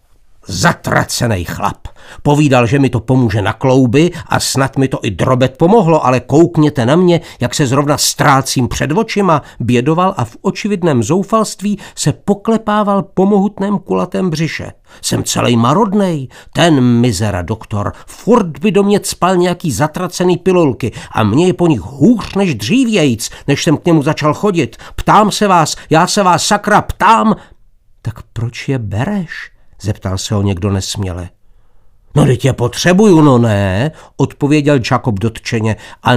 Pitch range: 120-185 Hz